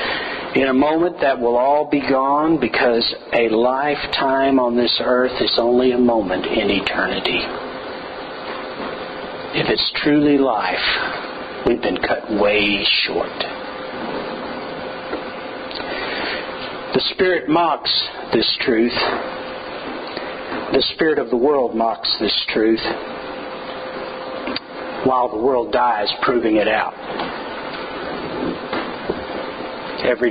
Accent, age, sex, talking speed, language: American, 50-69, male, 100 wpm, English